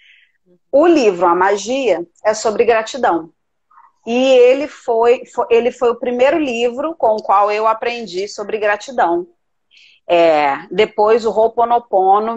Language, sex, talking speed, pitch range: Portuguese, female, 130 wpm, 200-265 Hz